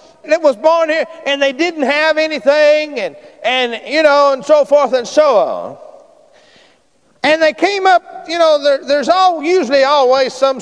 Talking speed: 180 wpm